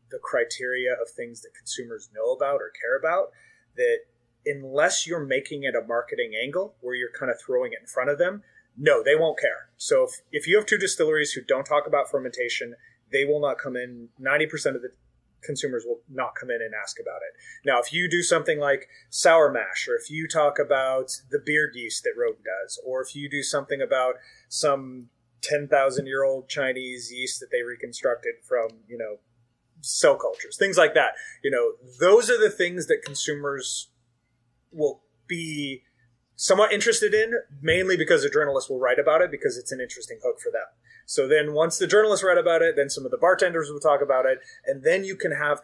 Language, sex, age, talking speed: English, male, 30-49, 200 wpm